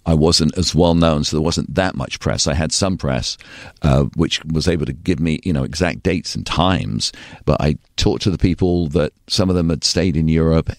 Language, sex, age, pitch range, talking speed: English, male, 50-69, 75-90 Hz, 230 wpm